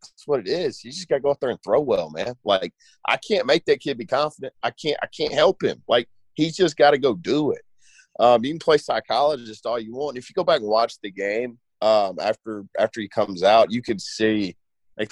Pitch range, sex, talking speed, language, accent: 100-145 Hz, male, 255 wpm, English, American